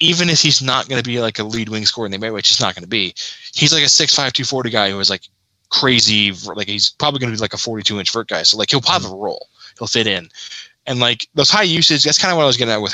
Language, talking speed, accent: English, 305 wpm, American